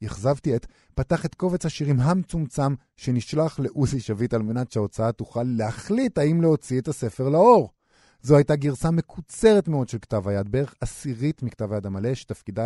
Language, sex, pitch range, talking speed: Hebrew, male, 110-150 Hz, 160 wpm